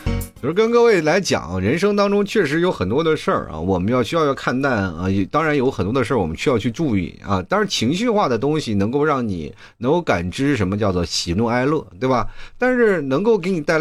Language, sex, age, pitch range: Chinese, male, 30-49, 100-160 Hz